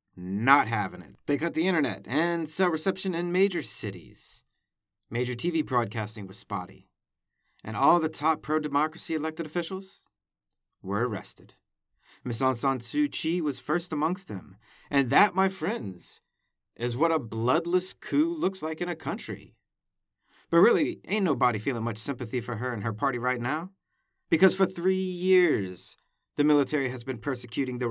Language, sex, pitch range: English, male, 120-165 Hz